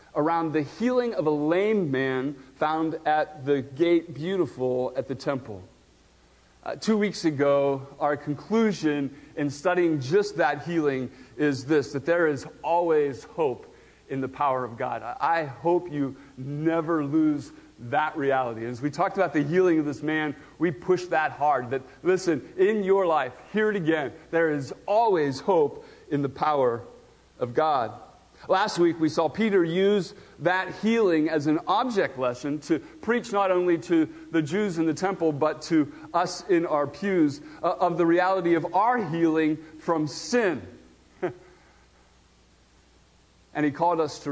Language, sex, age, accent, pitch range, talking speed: English, male, 40-59, American, 150-205 Hz, 155 wpm